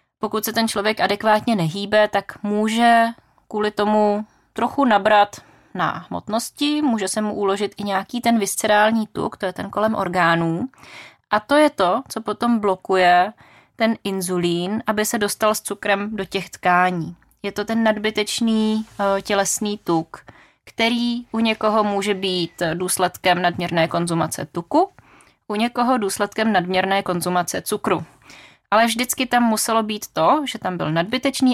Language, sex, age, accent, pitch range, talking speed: Czech, female, 20-39, native, 185-225 Hz, 145 wpm